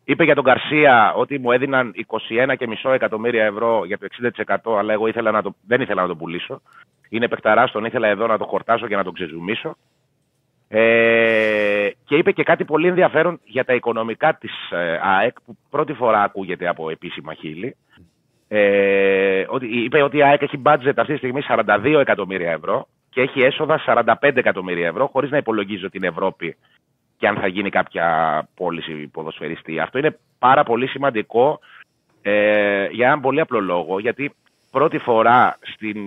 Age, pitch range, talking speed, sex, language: 30-49, 100-135 Hz, 170 wpm, male, Greek